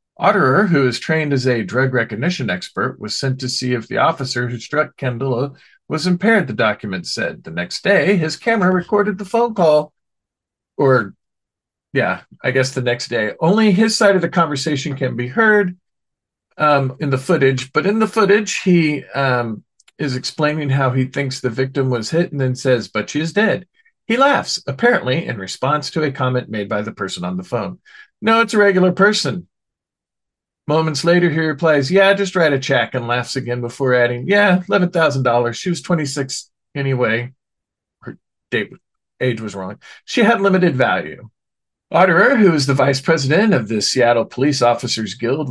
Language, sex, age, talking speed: English, male, 40-59, 180 wpm